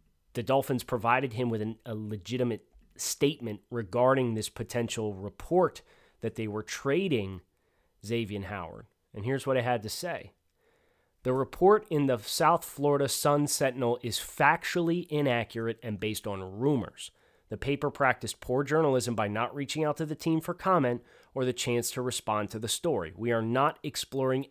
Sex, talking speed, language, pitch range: male, 165 wpm, English, 110-140 Hz